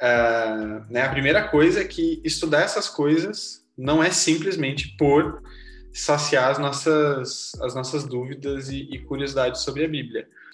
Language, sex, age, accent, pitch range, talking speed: Portuguese, male, 20-39, Brazilian, 125-155 Hz, 150 wpm